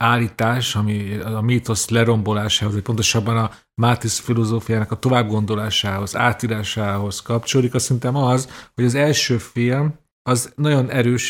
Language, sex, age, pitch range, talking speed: Hungarian, male, 40-59, 110-140 Hz, 135 wpm